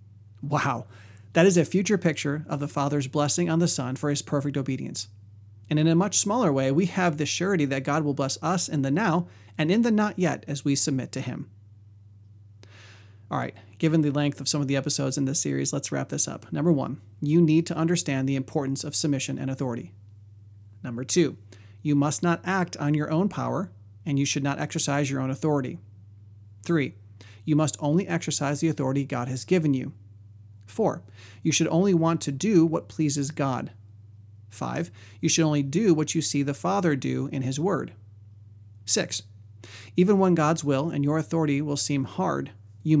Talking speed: 195 wpm